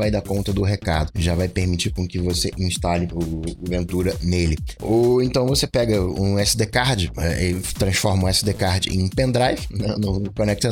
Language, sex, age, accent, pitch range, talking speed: Portuguese, male, 20-39, Brazilian, 90-125 Hz, 190 wpm